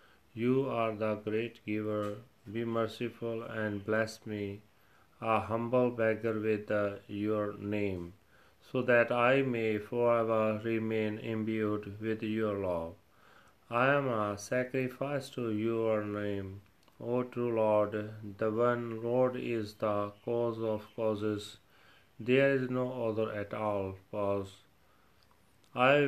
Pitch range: 105-120 Hz